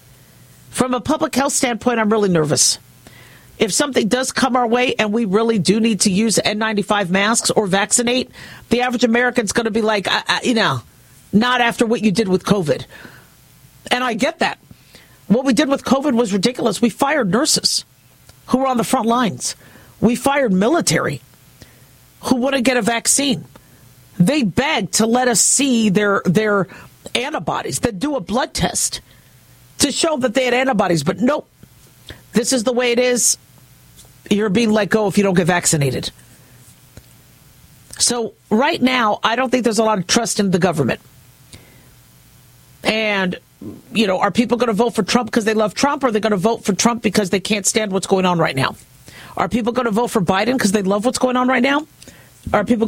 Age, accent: 50-69, American